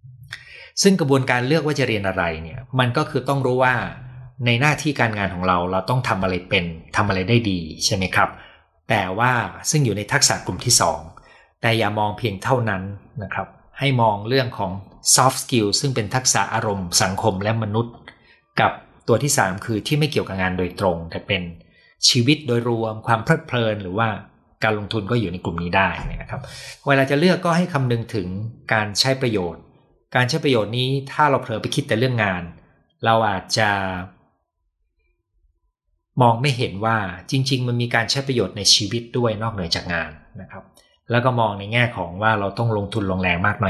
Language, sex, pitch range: Thai, male, 95-125 Hz